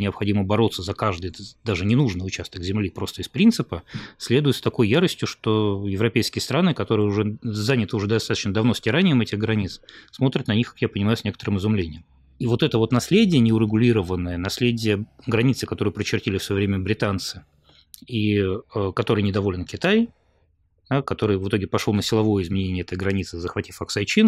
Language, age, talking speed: Russian, 20-39, 165 wpm